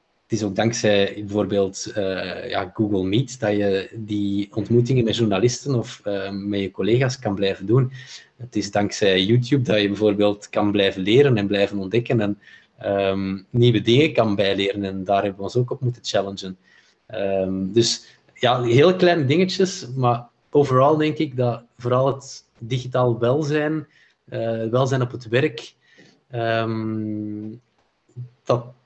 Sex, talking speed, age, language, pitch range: male, 145 wpm, 20-39, Dutch, 105-130 Hz